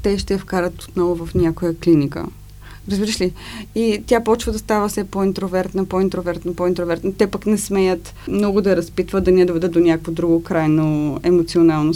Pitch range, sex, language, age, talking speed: 175-220 Hz, female, Bulgarian, 20-39, 170 wpm